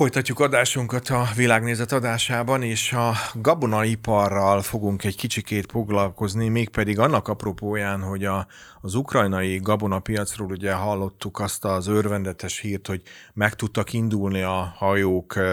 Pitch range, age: 95-110 Hz, 30-49